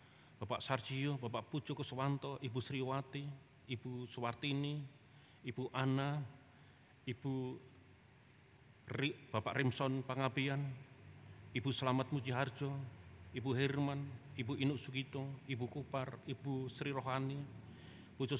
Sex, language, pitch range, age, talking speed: male, Indonesian, 125-140 Hz, 40-59, 100 wpm